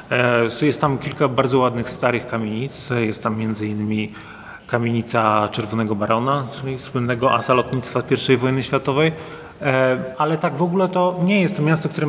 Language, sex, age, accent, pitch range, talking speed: Polish, male, 30-49, native, 125-160 Hz, 155 wpm